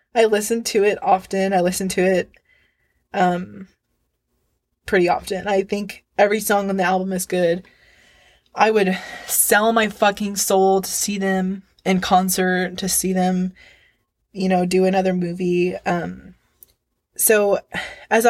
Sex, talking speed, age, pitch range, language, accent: female, 140 wpm, 20-39, 185-210 Hz, English, American